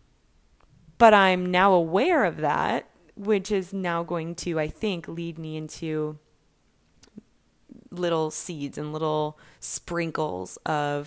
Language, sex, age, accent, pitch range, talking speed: English, female, 20-39, American, 150-175 Hz, 120 wpm